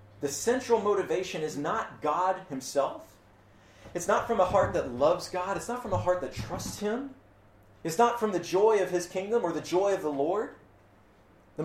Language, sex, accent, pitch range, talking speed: English, male, American, 120-185 Hz, 195 wpm